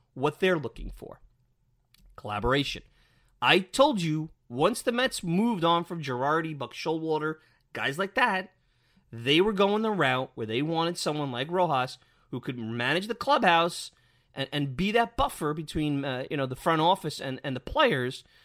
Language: English